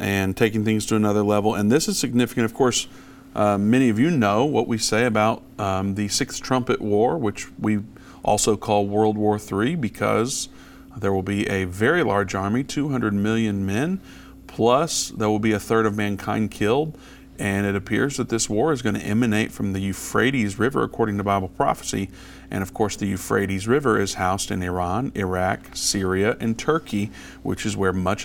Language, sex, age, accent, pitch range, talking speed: English, male, 50-69, American, 95-115 Hz, 190 wpm